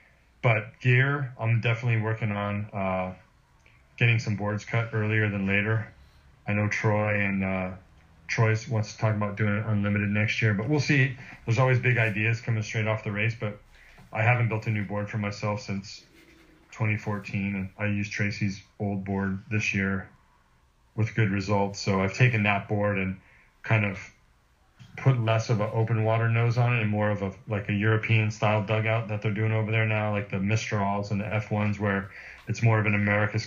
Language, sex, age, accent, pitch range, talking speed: English, male, 30-49, American, 100-110 Hz, 190 wpm